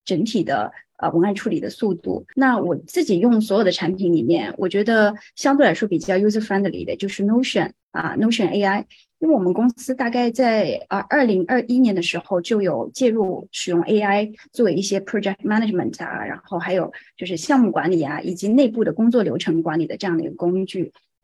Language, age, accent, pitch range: Chinese, 20-39, native, 185-240 Hz